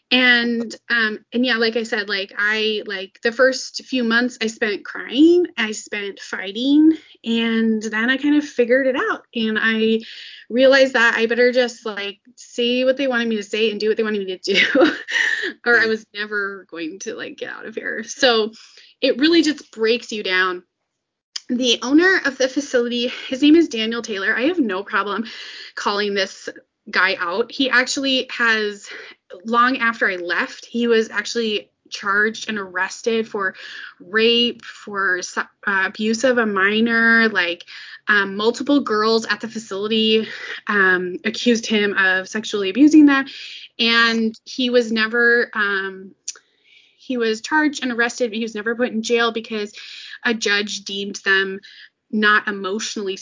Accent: American